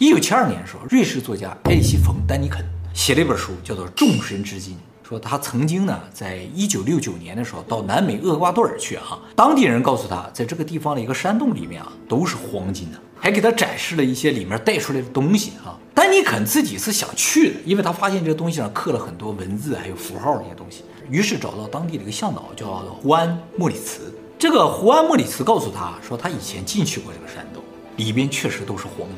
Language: Chinese